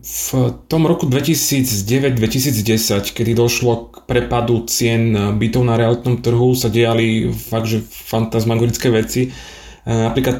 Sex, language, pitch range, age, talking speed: male, Slovak, 115-130 Hz, 30-49, 115 wpm